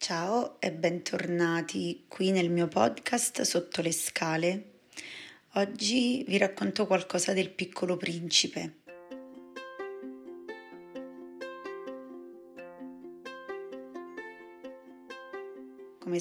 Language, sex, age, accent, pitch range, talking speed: Italian, female, 30-49, native, 160-185 Hz, 65 wpm